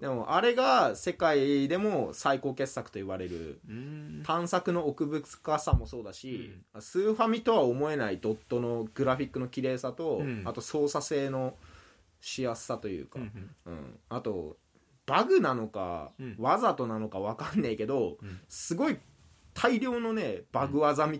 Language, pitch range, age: Japanese, 115-165 Hz, 20-39